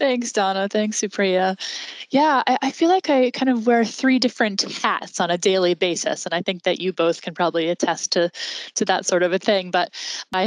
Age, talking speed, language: 10-29, 220 wpm, English